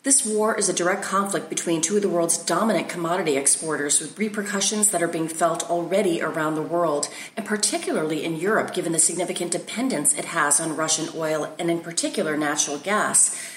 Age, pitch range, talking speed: 30-49, 165-210 Hz, 185 wpm